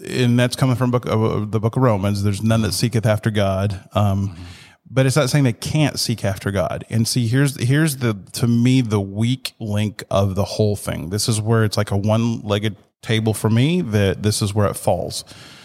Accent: American